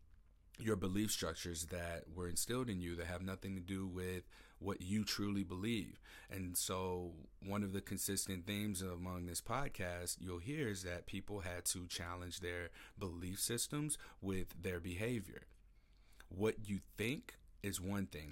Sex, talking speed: male, 155 wpm